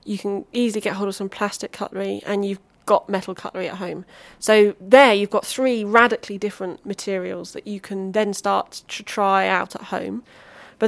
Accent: British